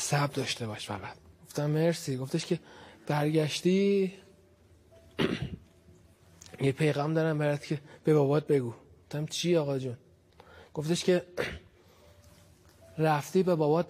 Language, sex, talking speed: Persian, male, 110 wpm